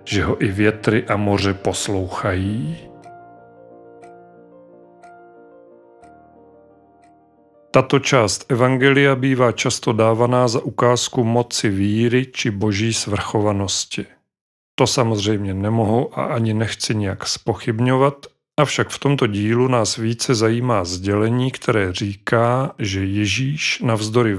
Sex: male